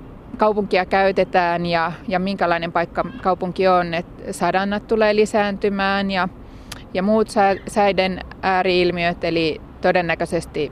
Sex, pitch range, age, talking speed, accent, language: female, 170-205 Hz, 30-49, 105 wpm, native, Finnish